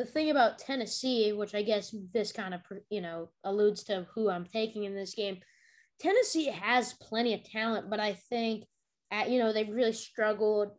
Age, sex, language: 20-39, female, English